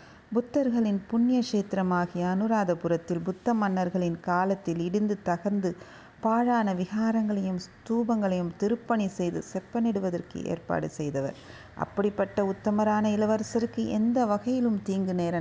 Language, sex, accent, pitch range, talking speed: Tamil, female, native, 170-220 Hz, 90 wpm